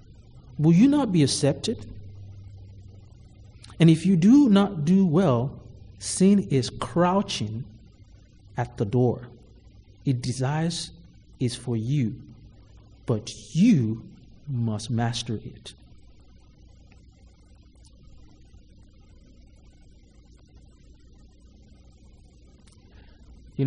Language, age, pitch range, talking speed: English, 50-69, 105-140 Hz, 75 wpm